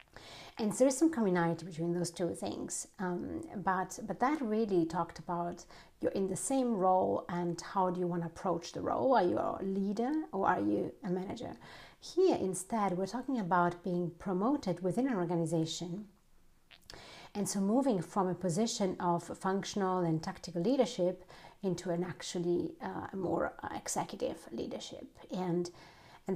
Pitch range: 175-210 Hz